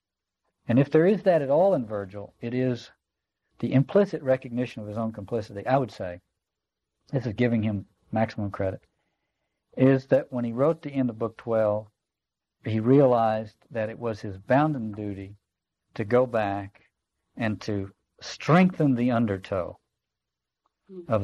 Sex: male